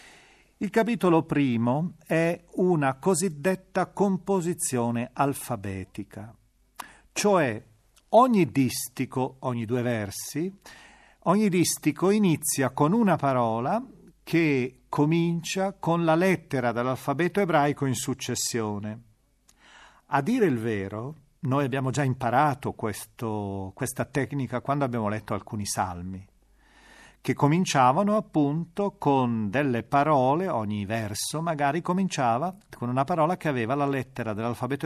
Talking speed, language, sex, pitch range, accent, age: 105 wpm, Italian, male, 115-160 Hz, native, 40-59